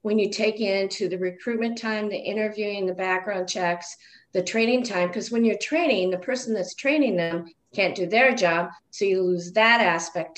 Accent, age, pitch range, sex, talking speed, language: American, 50-69, 185-230 Hz, female, 190 wpm, English